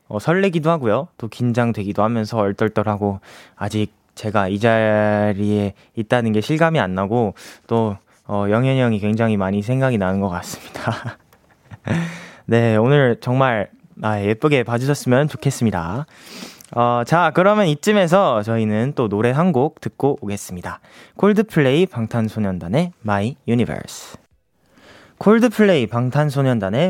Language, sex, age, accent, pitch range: Korean, male, 20-39, native, 110-165 Hz